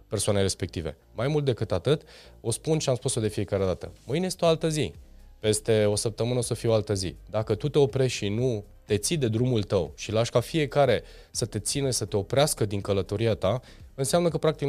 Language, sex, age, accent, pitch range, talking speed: Romanian, male, 20-39, native, 100-135 Hz, 225 wpm